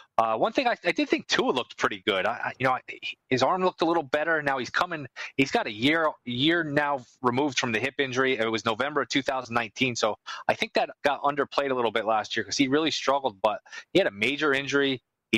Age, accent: 20-39, American